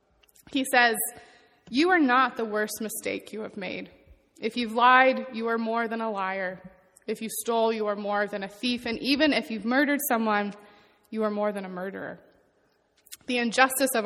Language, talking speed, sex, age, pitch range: English, 190 wpm, female, 20-39, 210-250 Hz